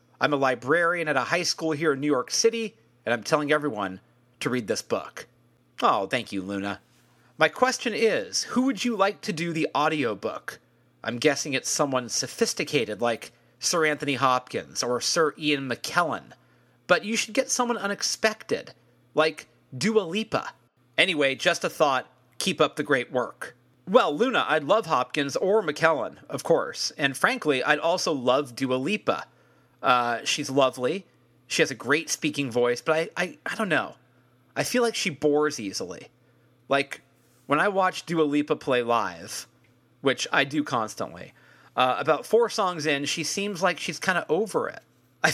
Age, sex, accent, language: 40-59, male, American, English